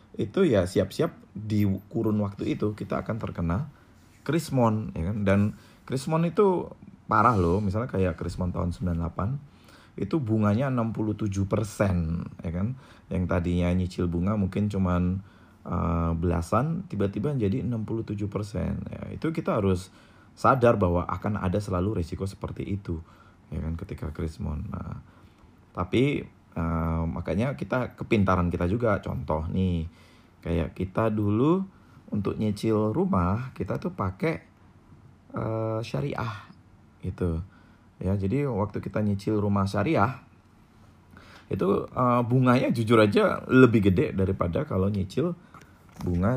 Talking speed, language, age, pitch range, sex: 125 wpm, Indonesian, 20-39, 90-115 Hz, male